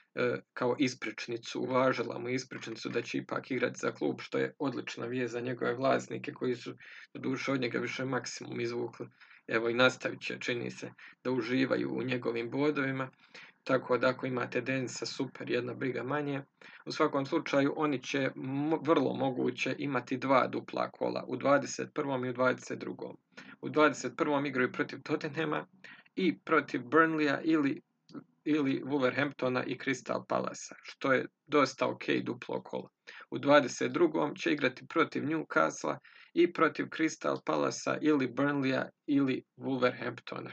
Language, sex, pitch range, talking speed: Croatian, male, 125-150 Hz, 140 wpm